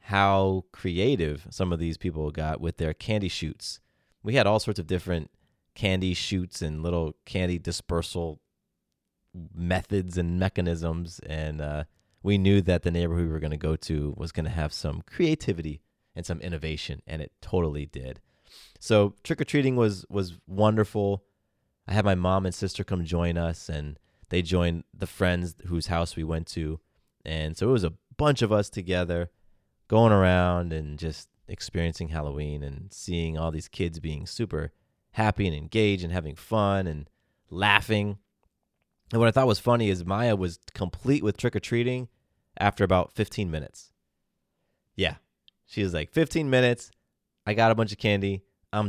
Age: 30-49